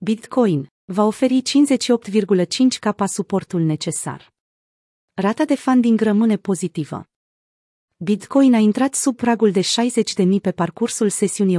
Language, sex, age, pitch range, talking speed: Romanian, female, 30-49, 185-225 Hz, 125 wpm